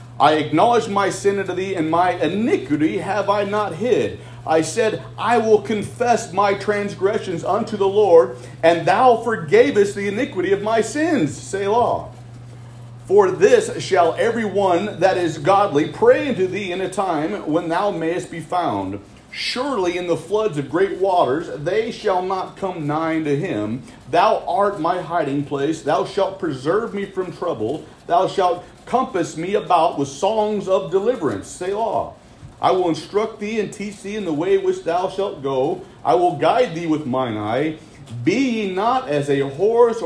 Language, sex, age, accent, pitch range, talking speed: English, male, 40-59, American, 150-210 Hz, 170 wpm